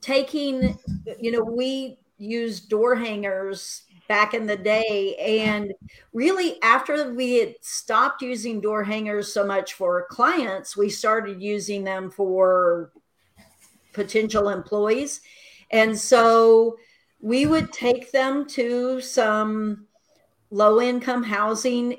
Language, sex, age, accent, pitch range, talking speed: English, female, 50-69, American, 205-245 Hz, 115 wpm